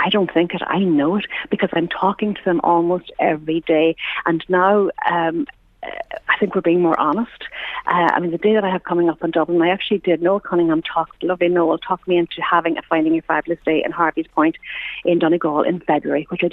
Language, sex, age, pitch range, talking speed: English, female, 50-69, 165-200 Hz, 225 wpm